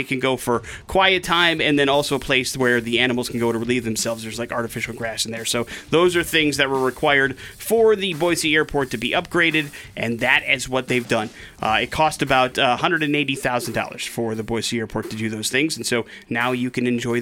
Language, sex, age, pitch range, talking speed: English, male, 30-49, 125-170 Hz, 225 wpm